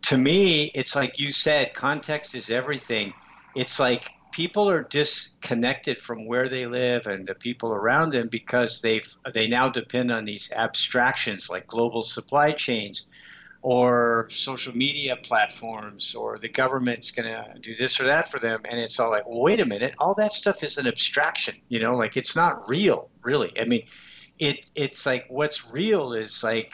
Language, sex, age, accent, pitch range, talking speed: English, male, 50-69, American, 115-145 Hz, 175 wpm